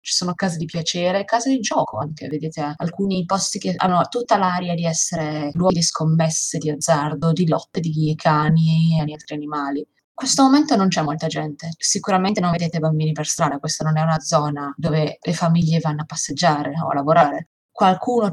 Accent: native